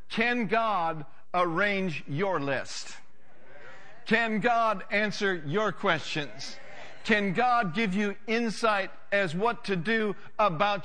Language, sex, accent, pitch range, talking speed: English, male, American, 165-225 Hz, 110 wpm